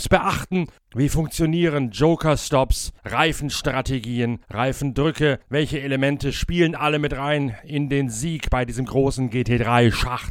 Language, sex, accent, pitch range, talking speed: German, male, German, 120-160 Hz, 110 wpm